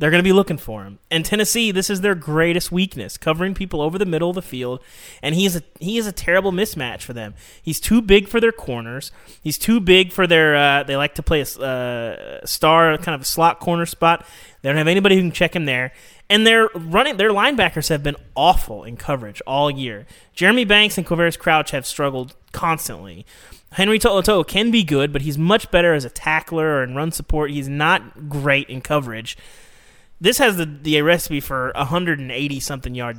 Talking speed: 205 wpm